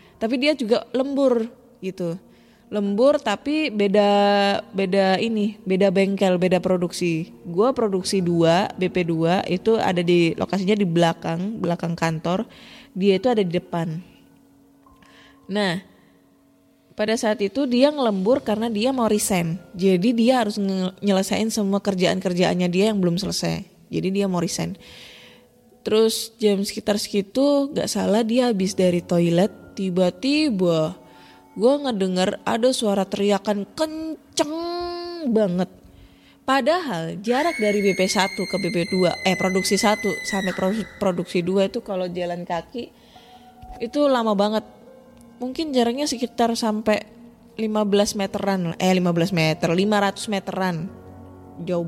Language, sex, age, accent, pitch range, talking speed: Indonesian, female, 20-39, native, 185-235 Hz, 125 wpm